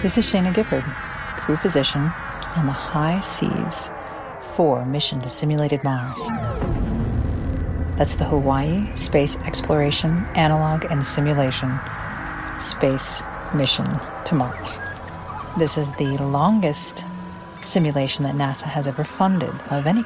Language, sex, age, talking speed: English, female, 50-69, 115 wpm